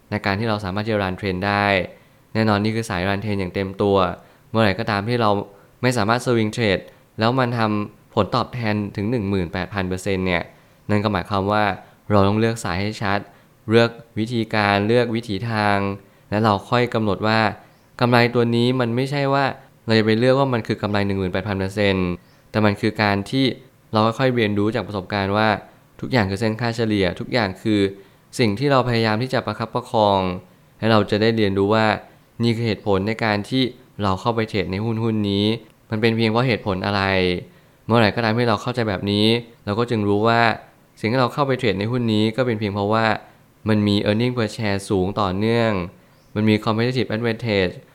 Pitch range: 100-120 Hz